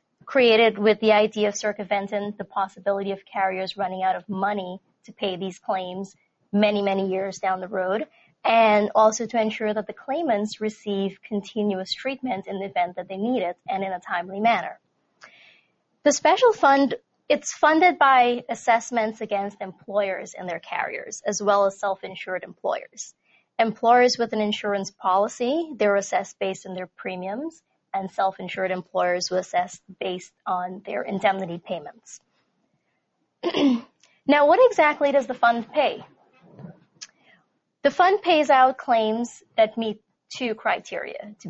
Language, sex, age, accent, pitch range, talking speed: English, female, 20-39, American, 190-235 Hz, 145 wpm